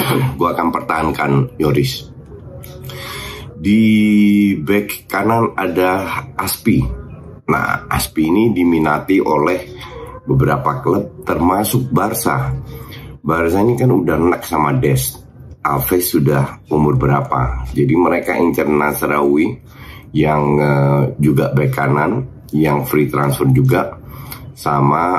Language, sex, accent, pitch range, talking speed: Indonesian, male, native, 70-100 Hz, 100 wpm